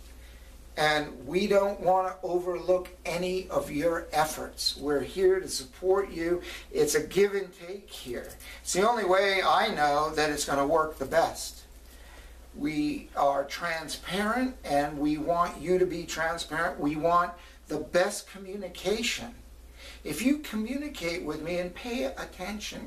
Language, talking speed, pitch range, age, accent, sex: English, 150 wpm, 150-205 Hz, 50-69, American, male